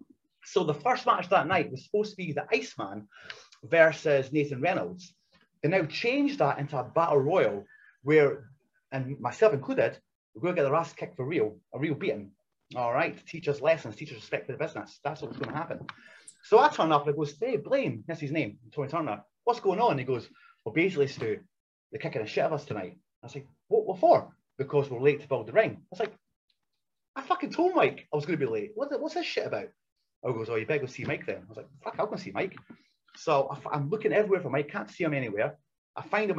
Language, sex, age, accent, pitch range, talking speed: English, male, 30-49, British, 140-215 Hz, 240 wpm